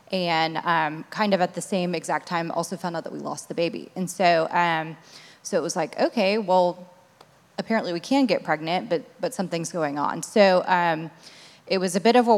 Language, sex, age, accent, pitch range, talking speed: English, female, 20-39, American, 160-185 Hz, 215 wpm